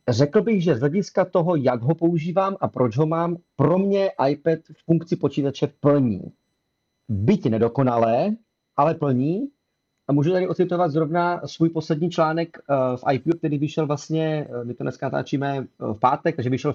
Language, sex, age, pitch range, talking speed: Czech, male, 40-59, 125-155 Hz, 160 wpm